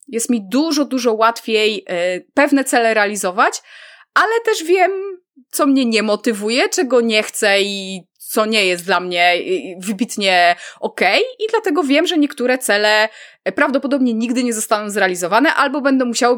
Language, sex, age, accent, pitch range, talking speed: Polish, female, 20-39, native, 205-290 Hz, 145 wpm